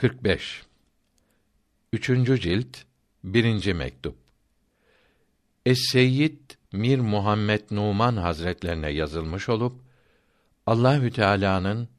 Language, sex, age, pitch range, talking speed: Turkish, male, 60-79, 85-120 Hz, 75 wpm